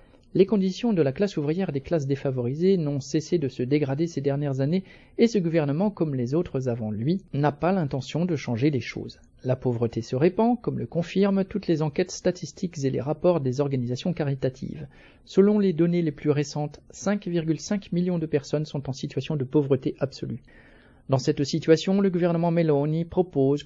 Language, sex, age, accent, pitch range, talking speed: French, male, 40-59, French, 135-175 Hz, 185 wpm